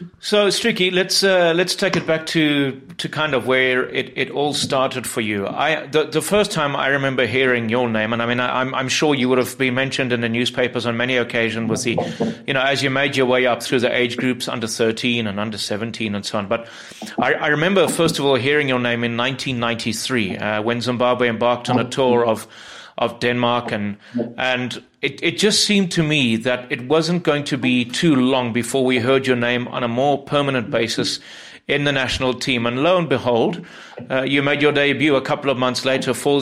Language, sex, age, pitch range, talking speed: English, male, 30-49, 120-145 Hz, 225 wpm